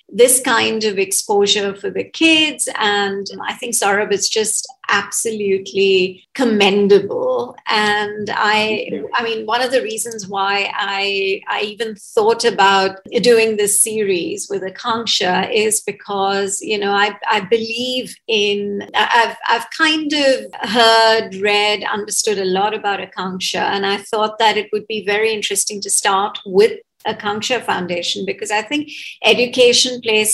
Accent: Indian